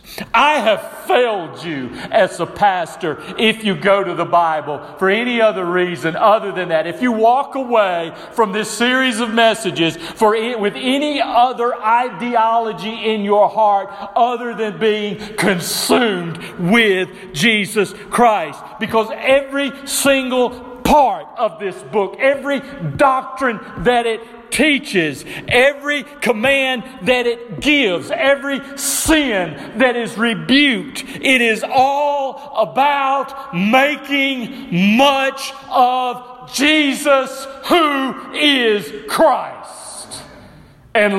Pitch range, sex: 185-265 Hz, male